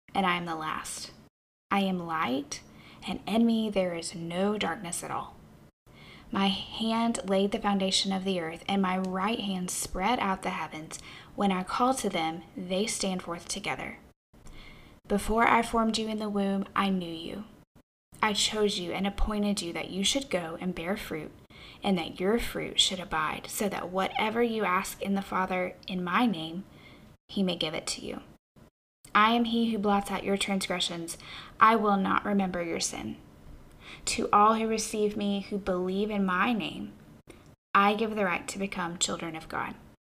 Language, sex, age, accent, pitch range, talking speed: English, female, 10-29, American, 180-210 Hz, 180 wpm